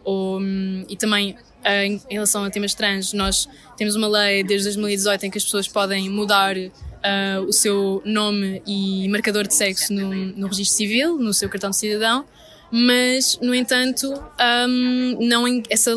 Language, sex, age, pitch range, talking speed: Portuguese, female, 10-29, 205-250 Hz, 145 wpm